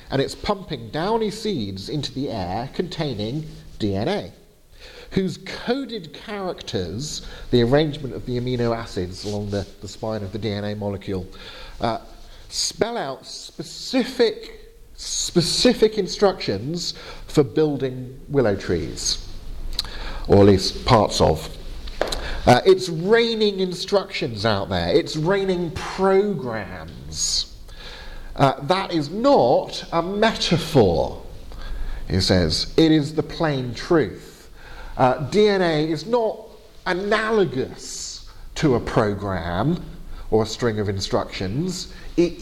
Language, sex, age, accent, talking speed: English, male, 50-69, British, 110 wpm